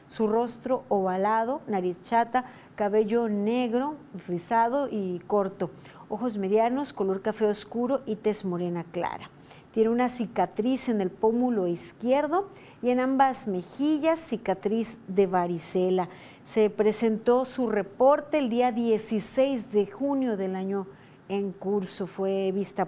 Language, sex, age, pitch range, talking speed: Spanish, female, 40-59, 190-235 Hz, 125 wpm